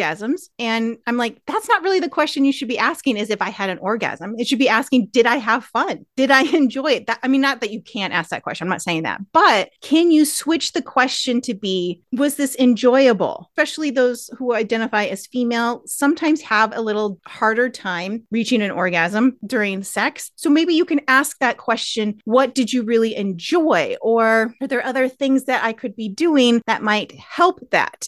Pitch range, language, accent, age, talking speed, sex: 220-280 Hz, English, American, 30-49, 210 wpm, female